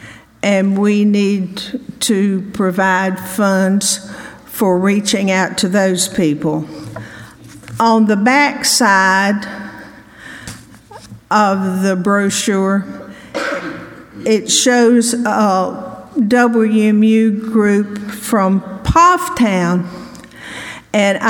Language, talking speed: English, 75 wpm